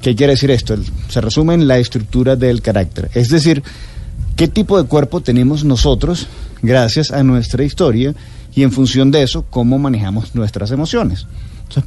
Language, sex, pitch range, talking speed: Spanish, male, 115-145 Hz, 165 wpm